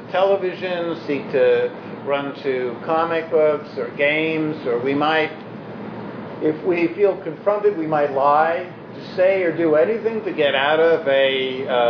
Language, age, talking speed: English, 50-69, 150 wpm